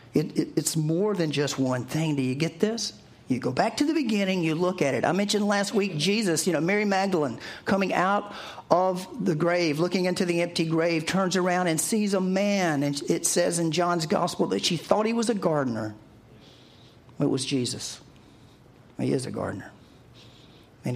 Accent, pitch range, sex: American, 130-170 Hz, male